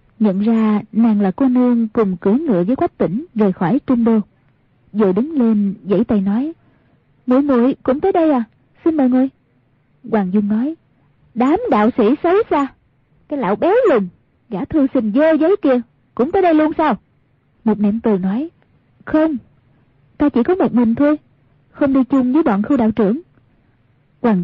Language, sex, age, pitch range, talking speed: Vietnamese, female, 20-39, 195-265 Hz, 180 wpm